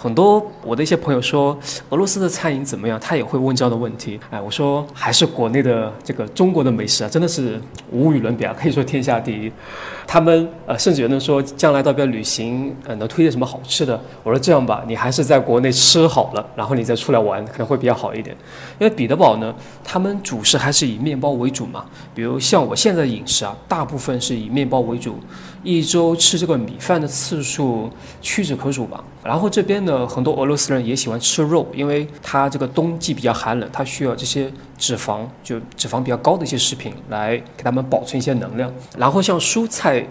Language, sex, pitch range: Chinese, male, 120-160 Hz